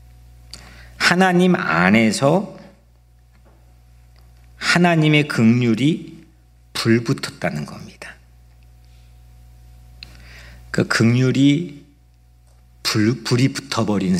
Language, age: Korean, 50-69